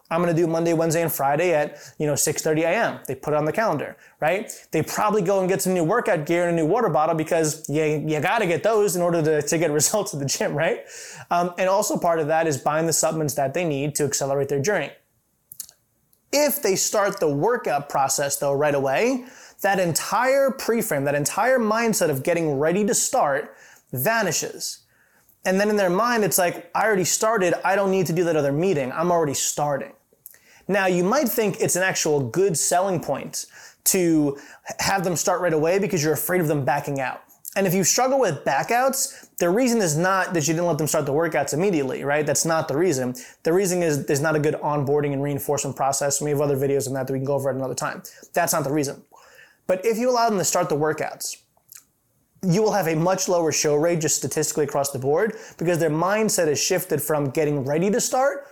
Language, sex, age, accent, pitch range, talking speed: English, male, 20-39, American, 150-195 Hz, 220 wpm